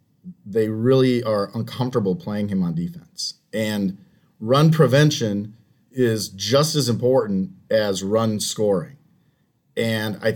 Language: English